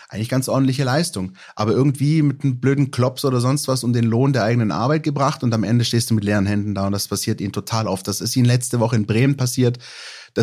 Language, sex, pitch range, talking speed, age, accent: German, male, 110-130 Hz, 255 wpm, 30-49, German